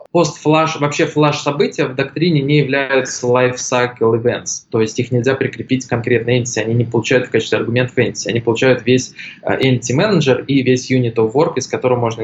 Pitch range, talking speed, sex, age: 120-150 Hz, 200 wpm, male, 20-39